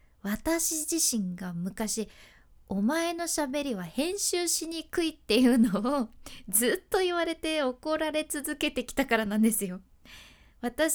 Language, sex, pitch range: Japanese, female, 215-330 Hz